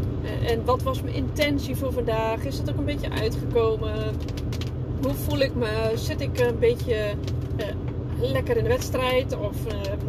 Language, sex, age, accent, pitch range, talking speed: Dutch, female, 20-39, Dutch, 105-125 Hz, 165 wpm